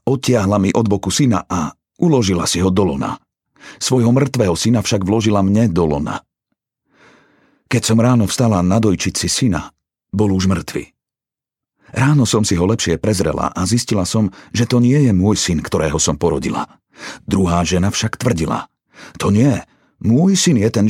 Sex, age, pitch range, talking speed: male, 50-69, 95-120 Hz, 165 wpm